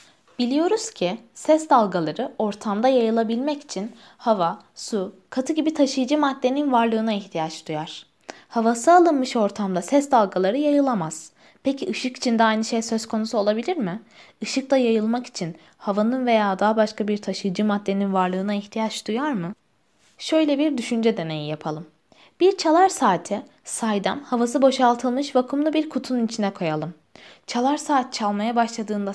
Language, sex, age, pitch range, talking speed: Turkish, female, 20-39, 205-270 Hz, 140 wpm